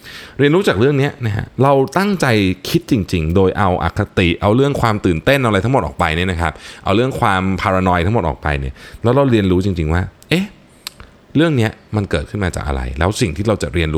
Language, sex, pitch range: Thai, male, 80-115 Hz